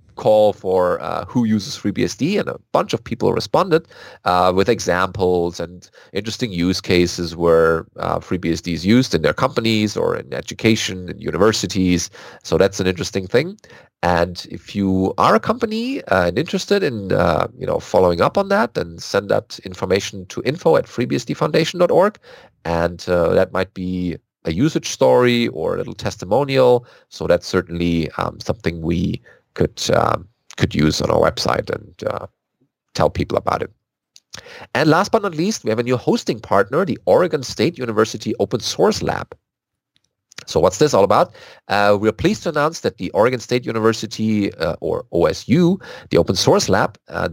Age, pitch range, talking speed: 30-49, 90-145 Hz, 170 wpm